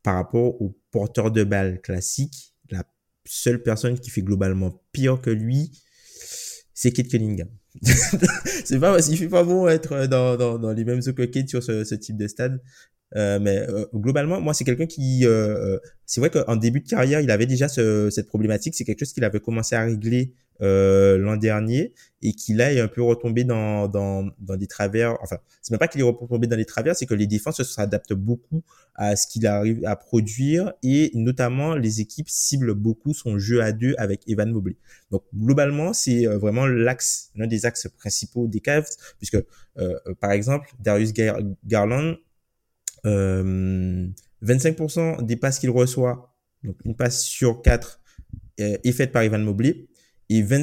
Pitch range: 105-135 Hz